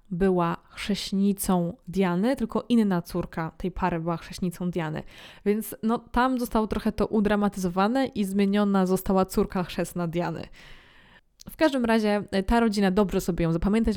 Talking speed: 140 wpm